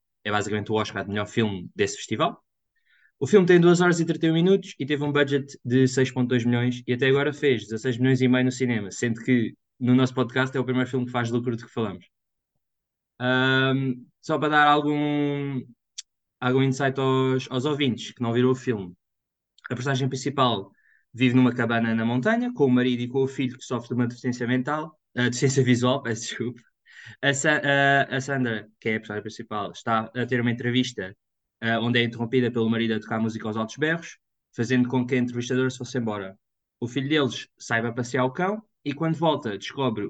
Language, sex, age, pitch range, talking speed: Portuguese, male, 20-39, 115-140 Hz, 200 wpm